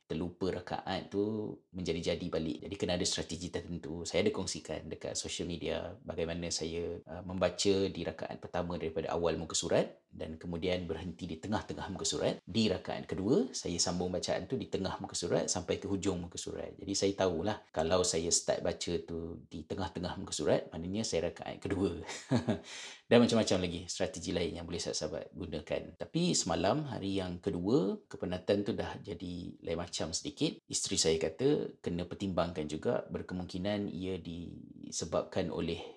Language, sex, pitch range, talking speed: Malay, male, 85-95 Hz, 160 wpm